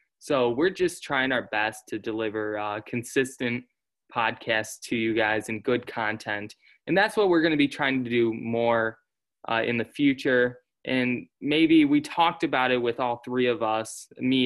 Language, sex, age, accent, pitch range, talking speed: English, male, 20-39, American, 115-135 Hz, 185 wpm